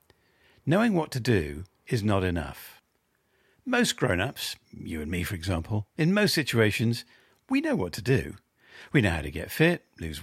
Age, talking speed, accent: 50-69, 170 wpm, British